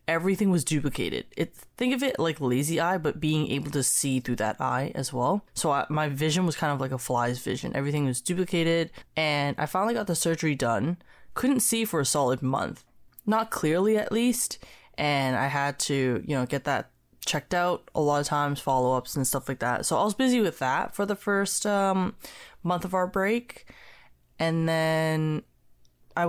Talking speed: 195 wpm